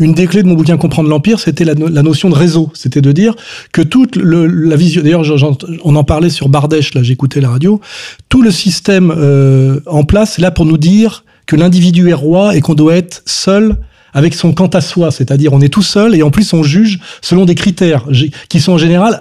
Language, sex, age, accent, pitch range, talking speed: French, male, 30-49, French, 155-190 Hz, 235 wpm